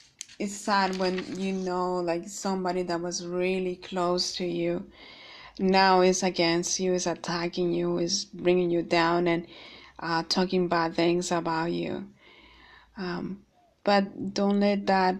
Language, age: English, 20-39